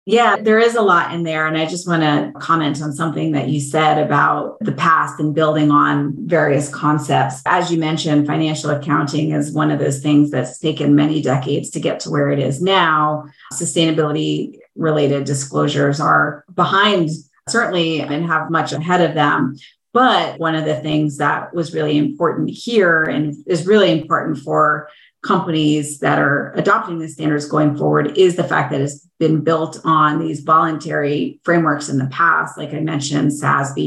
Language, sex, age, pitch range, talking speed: English, female, 30-49, 150-185 Hz, 175 wpm